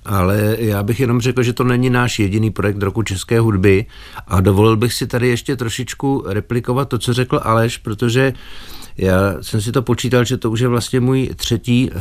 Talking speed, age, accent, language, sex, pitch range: 195 wpm, 50-69, native, Czech, male, 95-115 Hz